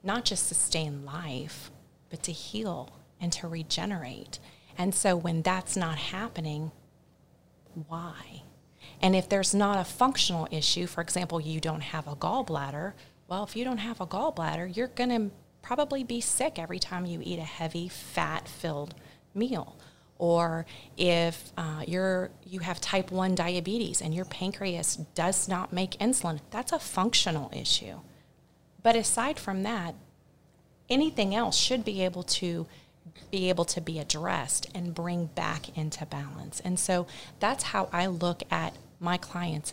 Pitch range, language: 160-195 Hz, English